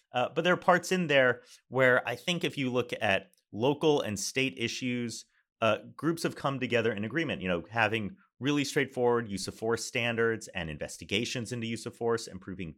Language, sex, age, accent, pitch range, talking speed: English, male, 30-49, American, 115-145 Hz, 195 wpm